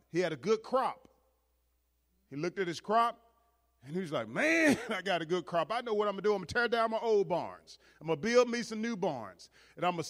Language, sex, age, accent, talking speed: English, male, 40-59, American, 275 wpm